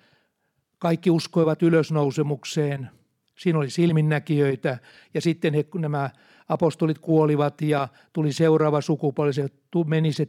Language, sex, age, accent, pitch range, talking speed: Finnish, male, 60-79, native, 145-175 Hz, 110 wpm